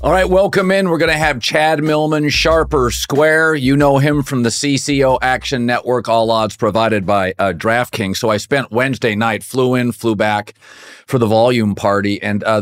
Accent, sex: American, male